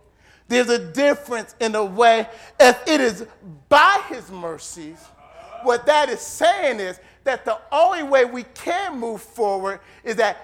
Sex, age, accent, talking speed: male, 40-59, American, 155 wpm